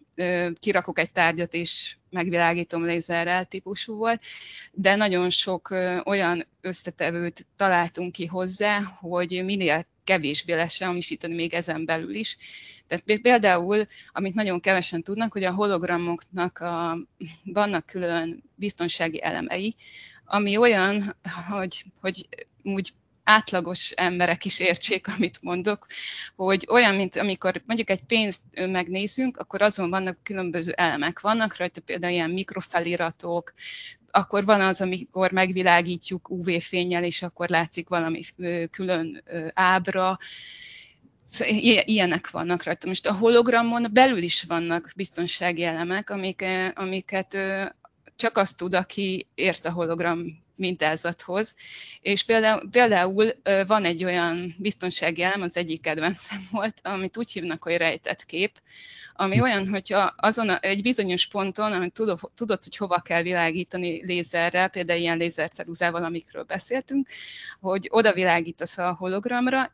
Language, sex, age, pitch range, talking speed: Hungarian, female, 20-39, 170-200 Hz, 120 wpm